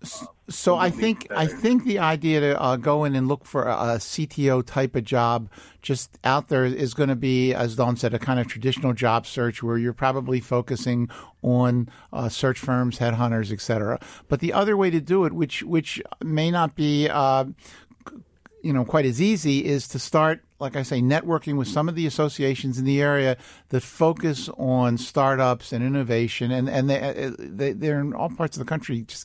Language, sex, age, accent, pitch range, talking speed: English, male, 50-69, American, 125-150 Hz, 195 wpm